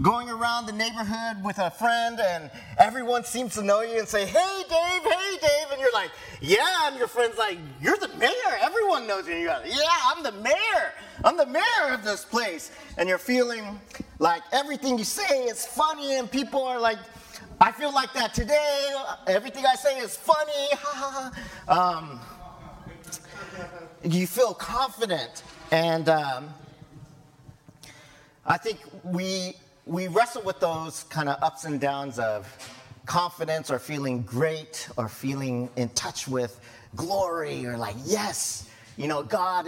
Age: 30-49